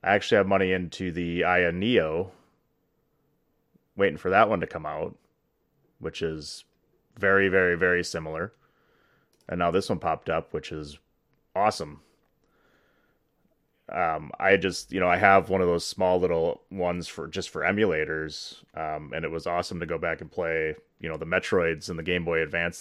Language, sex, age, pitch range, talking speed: English, male, 30-49, 85-100 Hz, 175 wpm